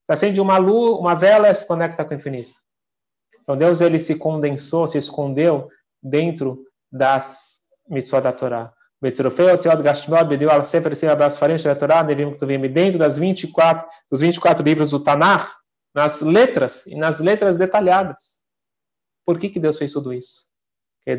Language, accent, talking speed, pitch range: Portuguese, Brazilian, 135 wpm, 140-180 Hz